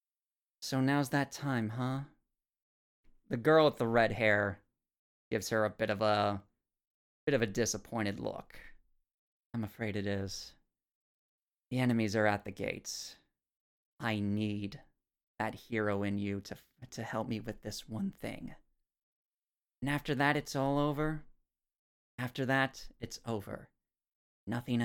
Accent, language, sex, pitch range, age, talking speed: American, English, male, 105-135 Hz, 30-49, 140 wpm